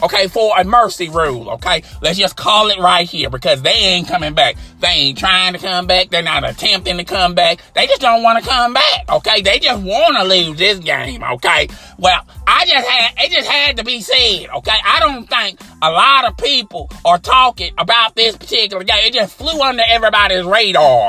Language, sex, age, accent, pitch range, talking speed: English, male, 30-49, American, 185-250 Hz, 215 wpm